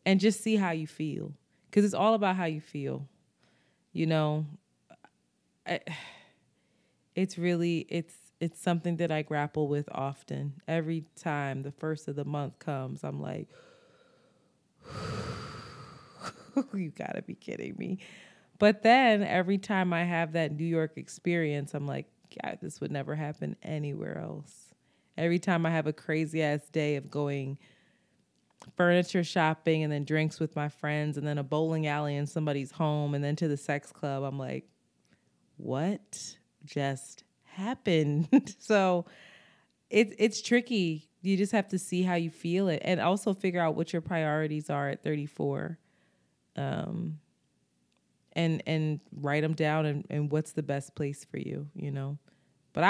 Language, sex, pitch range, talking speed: English, female, 145-180 Hz, 155 wpm